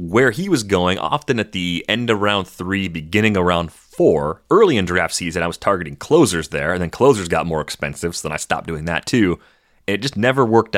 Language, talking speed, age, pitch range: English, 230 wpm, 30-49, 80-100 Hz